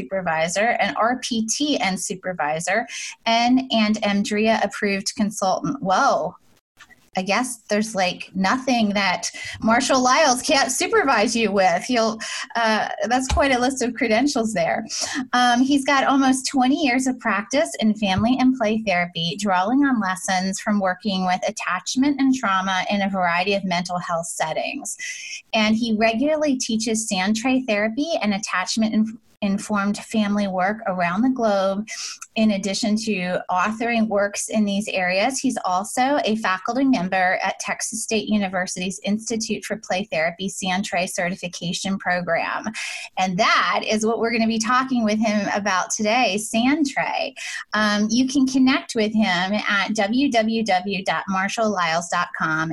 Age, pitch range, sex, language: 20-39, 190-245 Hz, female, English